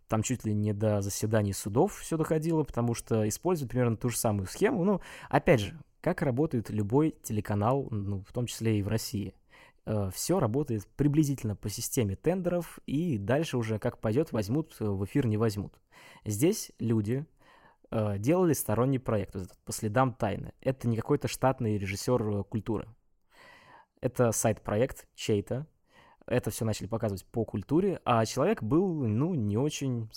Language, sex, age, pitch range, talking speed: Russian, male, 20-39, 110-145 Hz, 155 wpm